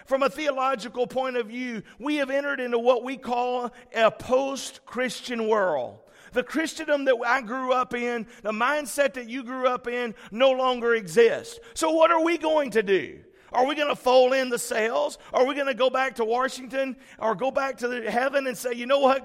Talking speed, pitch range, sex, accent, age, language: 205 wpm, 240-290 Hz, male, American, 50-69, English